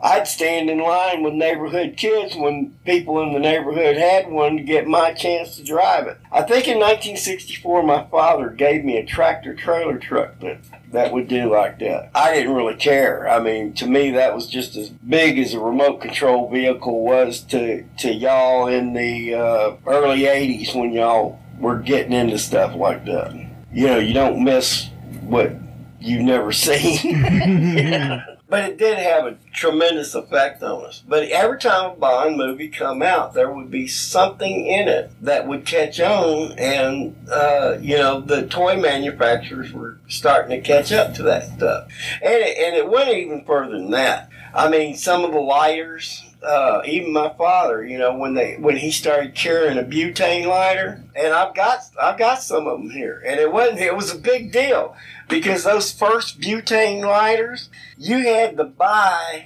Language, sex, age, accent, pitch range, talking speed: English, male, 50-69, American, 135-190 Hz, 180 wpm